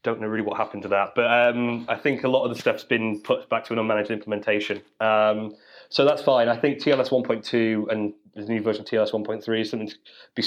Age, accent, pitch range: 20-39, British, 105-115 Hz